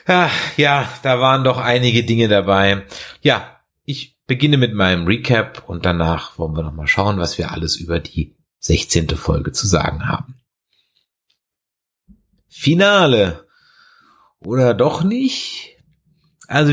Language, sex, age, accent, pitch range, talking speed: German, male, 30-49, German, 90-125 Hz, 120 wpm